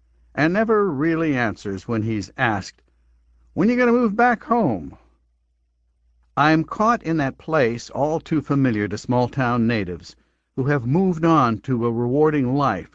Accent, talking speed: American, 160 wpm